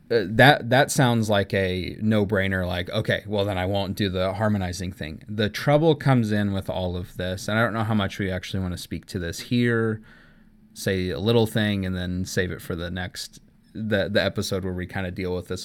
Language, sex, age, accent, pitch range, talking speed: English, male, 20-39, American, 90-110 Hz, 230 wpm